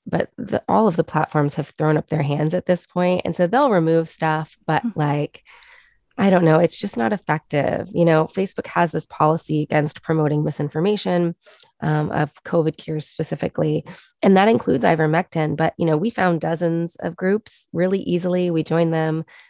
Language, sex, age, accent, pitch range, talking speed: English, female, 20-39, American, 155-180 Hz, 180 wpm